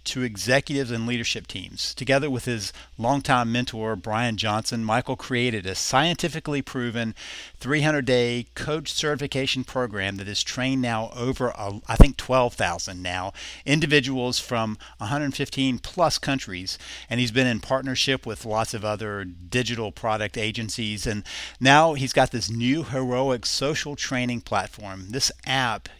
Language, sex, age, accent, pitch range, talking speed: English, male, 50-69, American, 105-135 Hz, 140 wpm